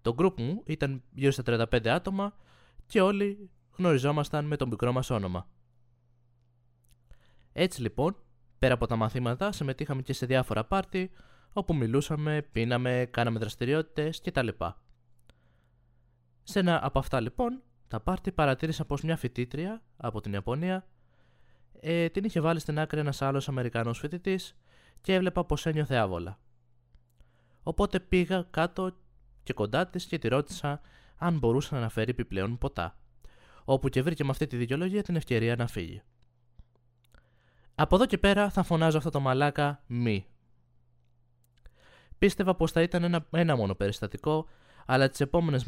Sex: male